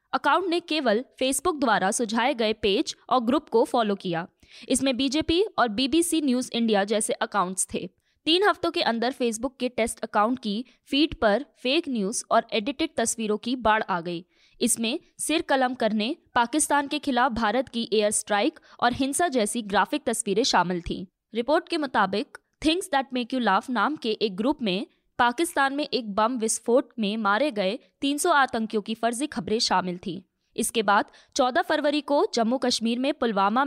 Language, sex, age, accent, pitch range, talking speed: Hindi, female, 20-39, native, 215-275 Hz, 175 wpm